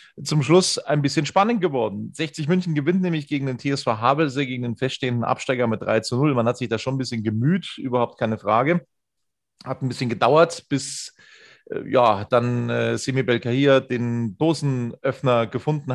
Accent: German